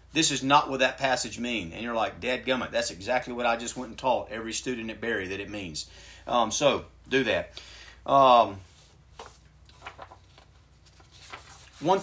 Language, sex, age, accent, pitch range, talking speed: English, male, 40-59, American, 115-165 Hz, 160 wpm